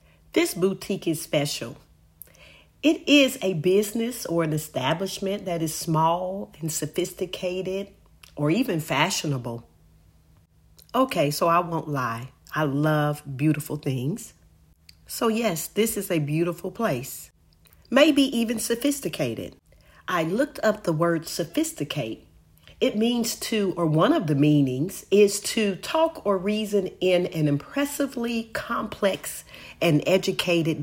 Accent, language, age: American, English, 40-59